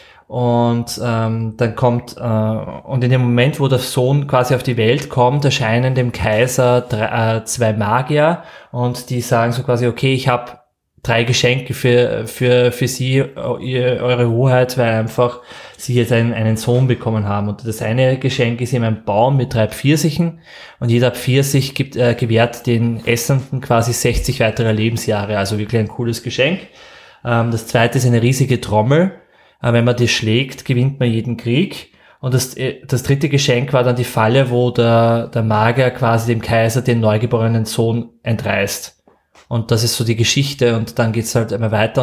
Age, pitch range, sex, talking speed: 20-39, 115-130 Hz, male, 180 wpm